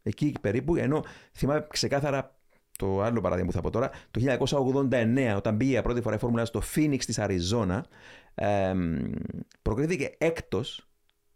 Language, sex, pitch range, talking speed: Greek, male, 100-140 Hz, 135 wpm